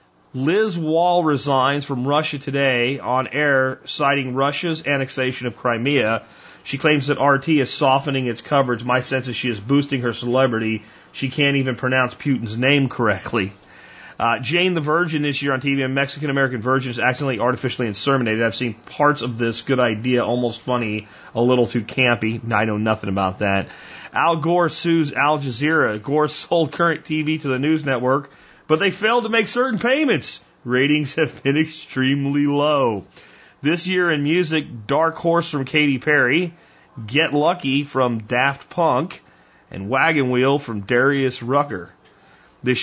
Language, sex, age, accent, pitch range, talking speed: English, male, 40-59, American, 125-150 Hz, 160 wpm